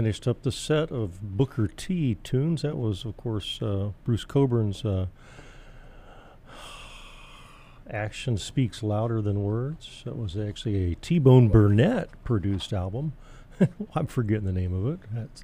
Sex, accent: male, American